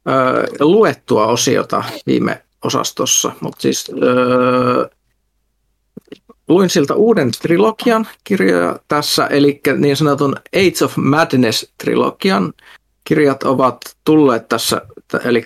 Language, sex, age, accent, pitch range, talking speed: Finnish, male, 50-69, native, 125-150 Hz, 90 wpm